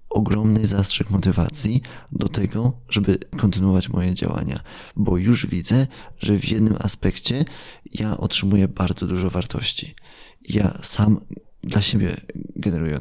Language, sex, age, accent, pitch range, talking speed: Polish, male, 30-49, native, 90-105 Hz, 120 wpm